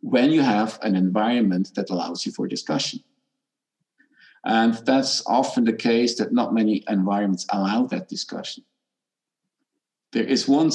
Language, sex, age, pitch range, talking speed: English, male, 50-69, 100-130 Hz, 140 wpm